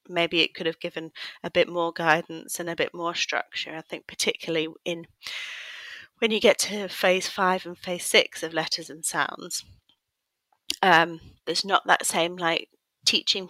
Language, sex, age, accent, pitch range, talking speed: English, female, 30-49, British, 160-175 Hz, 170 wpm